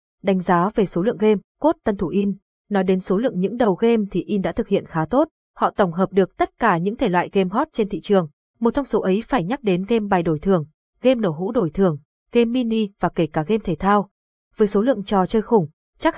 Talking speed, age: 260 wpm, 20-39